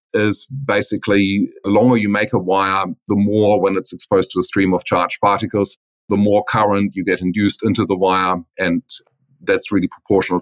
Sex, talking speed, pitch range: male, 185 wpm, 95-120 Hz